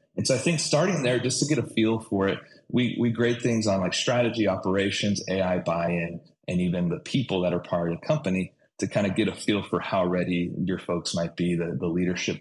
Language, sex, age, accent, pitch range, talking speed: English, male, 30-49, American, 95-115 Hz, 235 wpm